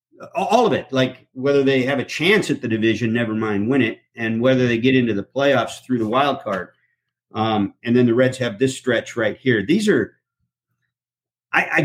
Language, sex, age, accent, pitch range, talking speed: English, male, 50-69, American, 110-140 Hz, 205 wpm